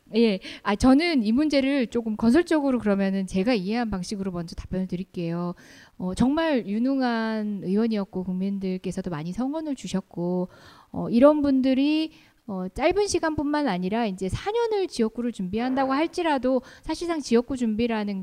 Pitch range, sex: 200-280 Hz, female